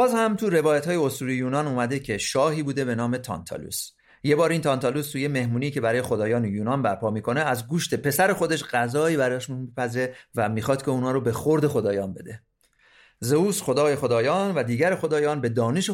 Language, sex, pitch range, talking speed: Persian, male, 125-175 Hz, 185 wpm